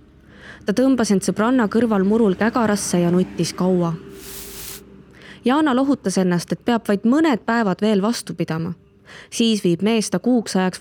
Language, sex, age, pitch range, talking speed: English, female, 20-39, 180-220 Hz, 135 wpm